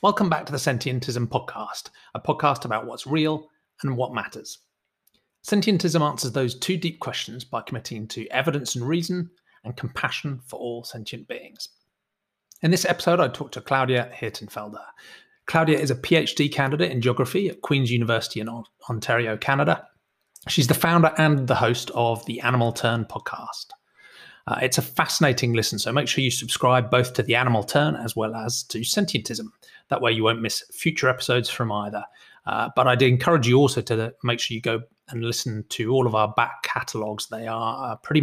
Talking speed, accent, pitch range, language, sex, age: 180 wpm, British, 115-155 Hz, English, male, 30-49